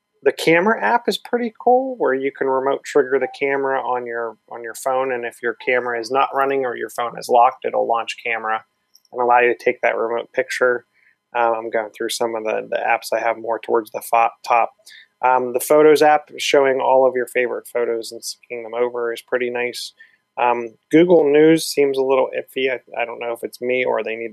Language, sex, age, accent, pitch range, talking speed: English, male, 20-39, American, 115-140 Hz, 225 wpm